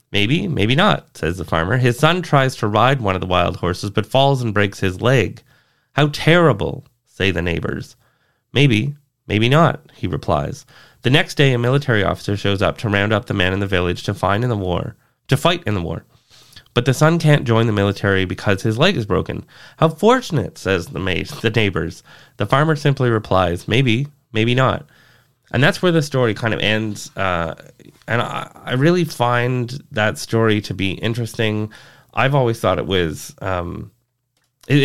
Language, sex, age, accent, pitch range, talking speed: English, male, 20-39, American, 100-135 Hz, 190 wpm